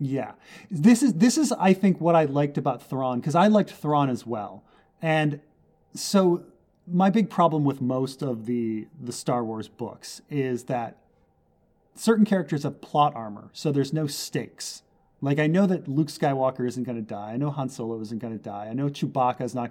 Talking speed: 200 wpm